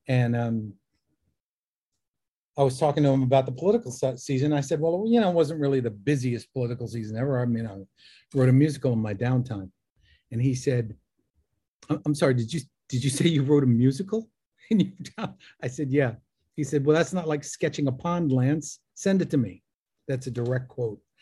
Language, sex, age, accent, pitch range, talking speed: English, male, 50-69, American, 120-145 Hz, 190 wpm